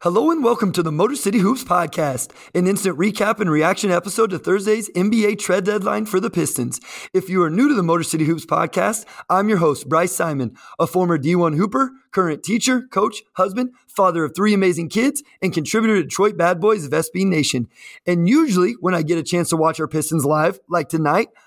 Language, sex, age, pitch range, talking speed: English, male, 30-49, 165-200 Hz, 205 wpm